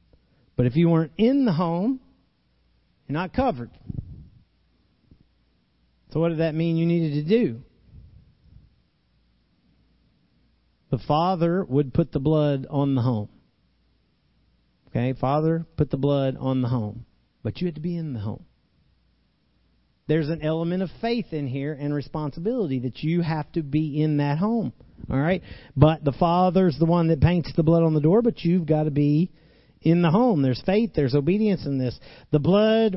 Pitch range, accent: 130-175 Hz, American